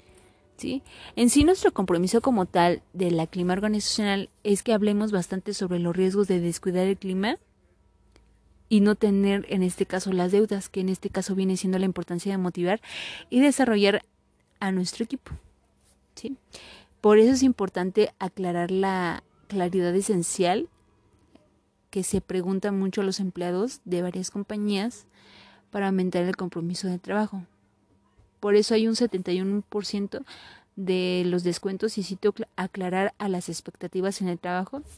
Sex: female